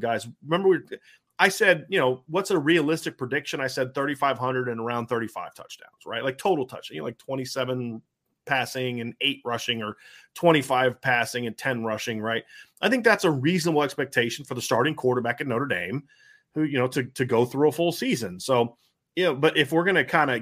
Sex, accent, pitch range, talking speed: male, American, 125-150 Hz, 205 wpm